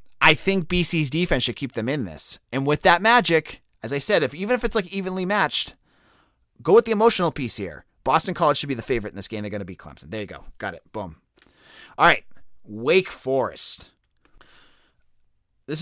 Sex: male